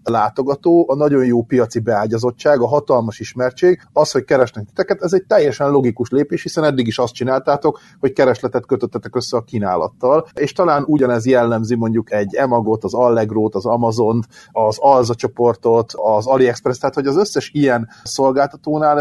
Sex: male